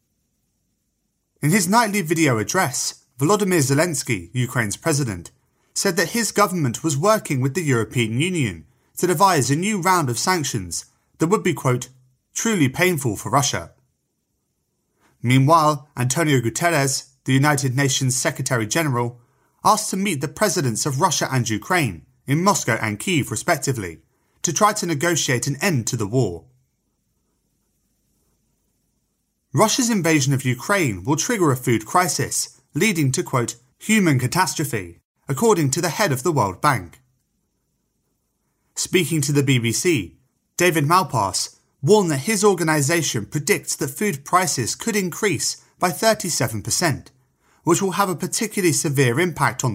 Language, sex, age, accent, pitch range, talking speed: English, male, 30-49, British, 125-180 Hz, 135 wpm